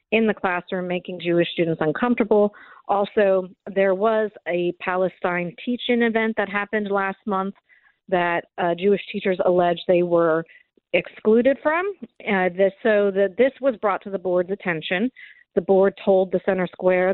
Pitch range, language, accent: 175-205 Hz, English, American